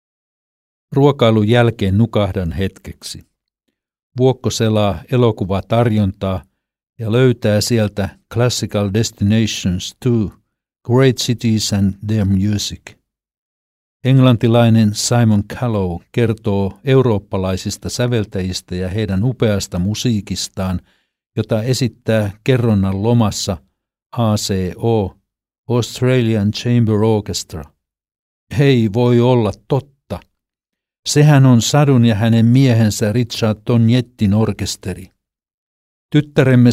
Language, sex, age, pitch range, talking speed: Finnish, male, 60-79, 100-120 Hz, 80 wpm